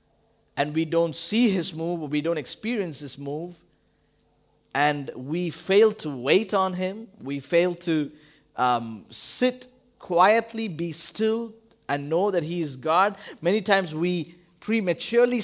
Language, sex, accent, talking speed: English, male, Indian, 140 wpm